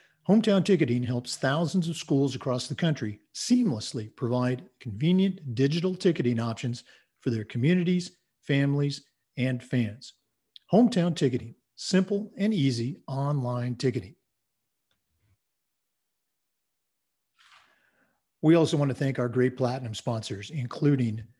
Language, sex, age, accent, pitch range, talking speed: English, male, 50-69, American, 125-165 Hz, 105 wpm